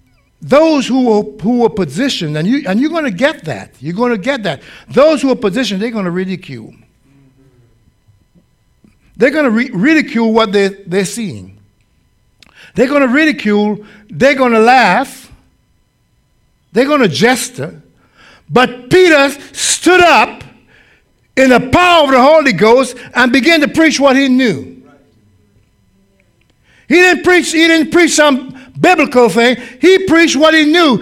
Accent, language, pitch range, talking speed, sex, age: American, English, 210-330 Hz, 155 wpm, male, 60-79